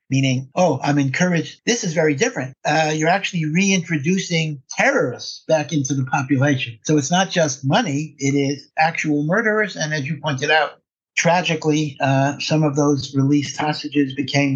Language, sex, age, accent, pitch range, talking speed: English, male, 60-79, American, 140-165 Hz, 160 wpm